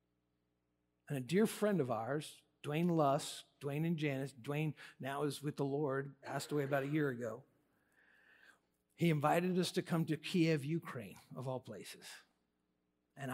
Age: 50-69